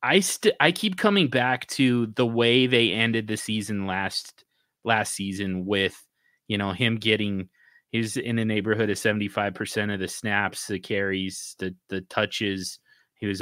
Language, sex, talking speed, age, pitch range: English, male, 175 wpm, 30-49, 100-125 Hz